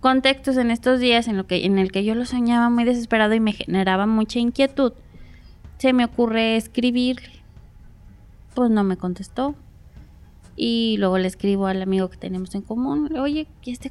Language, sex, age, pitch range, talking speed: Spanish, female, 20-39, 190-245 Hz, 175 wpm